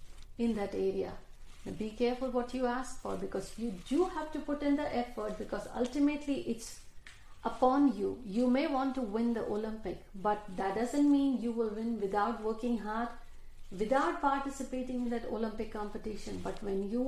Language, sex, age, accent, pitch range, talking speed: Hindi, female, 50-69, native, 210-255 Hz, 175 wpm